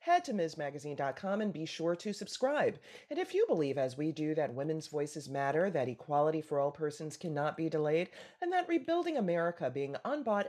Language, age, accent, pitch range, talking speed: English, 30-49, American, 150-220 Hz, 190 wpm